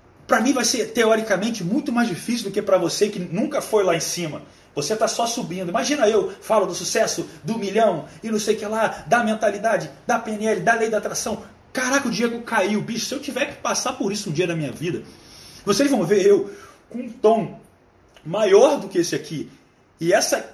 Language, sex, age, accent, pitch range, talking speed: Portuguese, male, 30-49, Brazilian, 180-235 Hz, 215 wpm